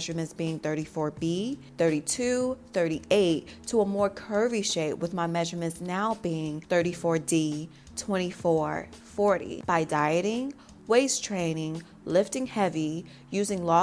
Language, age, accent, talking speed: English, 30-49, American, 115 wpm